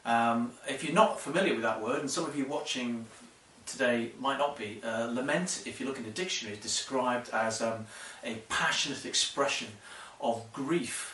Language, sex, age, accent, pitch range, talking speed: English, male, 40-59, British, 115-145 Hz, 185 wpm